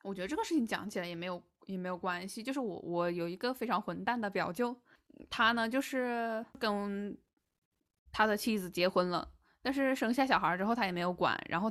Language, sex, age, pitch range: Chinese, female, 10-29, 185-255 Hz